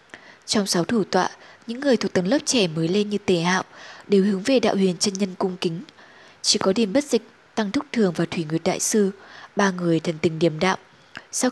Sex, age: female, 20-39